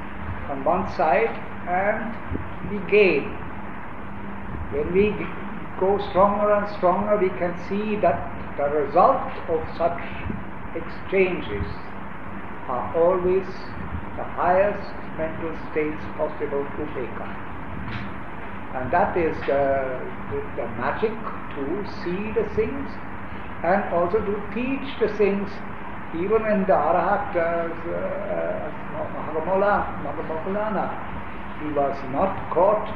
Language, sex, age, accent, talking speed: English, male, 60-79, Indian, 100 wpm